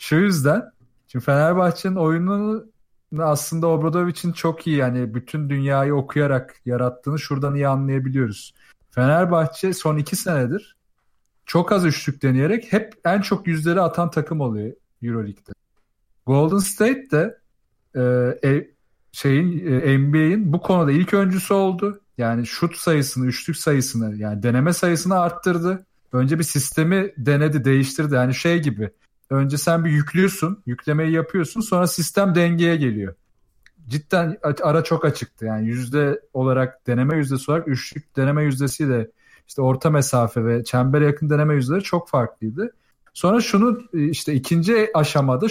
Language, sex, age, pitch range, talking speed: Turkish, male, 40-59, 135-180 Hz, 130 wpm